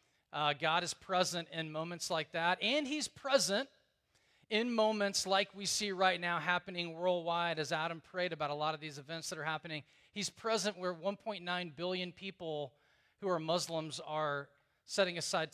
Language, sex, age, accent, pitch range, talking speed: English, male, 40-59, American, 150-195 Hz, 170 wpm